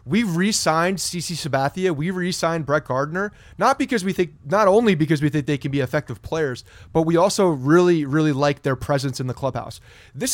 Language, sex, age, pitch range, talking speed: English, male, 30-49, 135-180 Hz, 195 wpm